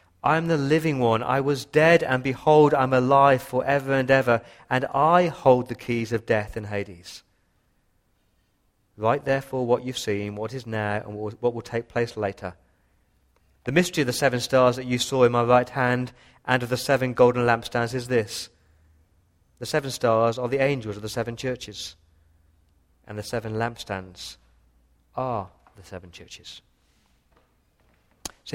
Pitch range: 105-155 Hz